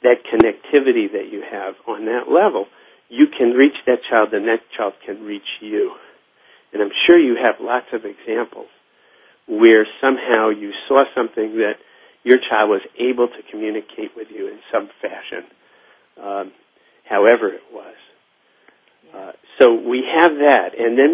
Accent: American